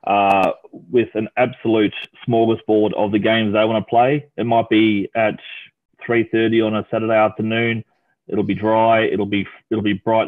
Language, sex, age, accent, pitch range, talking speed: English, male, 30-49, Australian, 110-125 Hz, 170 wpm